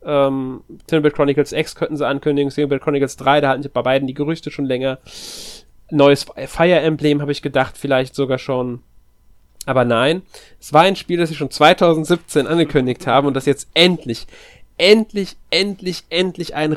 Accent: German